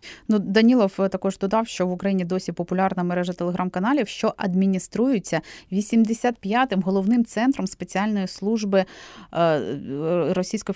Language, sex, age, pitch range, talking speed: Ukrainian, female, 30-49, 170-200 Hz, 105 wpm